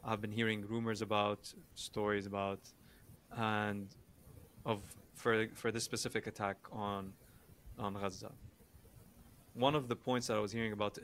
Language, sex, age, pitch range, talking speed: English, male, 20-39, 105-120 Hz, 140 wpm